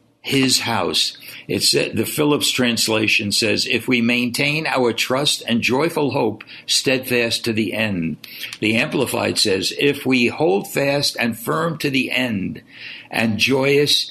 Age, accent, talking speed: 60-79, American, 145 wpm